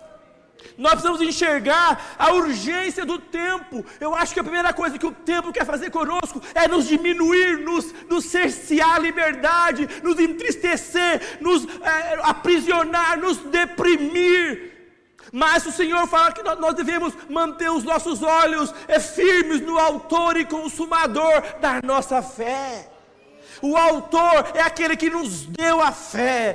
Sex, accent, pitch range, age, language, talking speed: male, Brazilian, 285-335 Hz, 50-69, Portuguese, 140 wpm